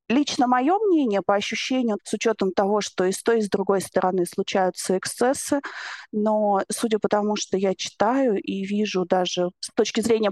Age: 30-49